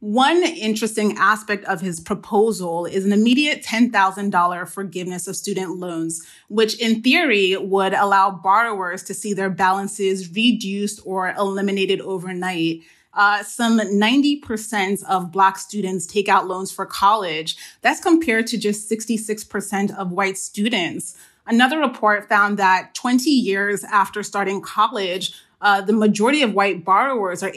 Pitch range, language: 190-225 Hz, English